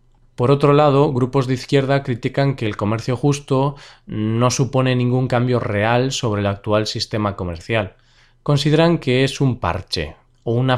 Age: 20-39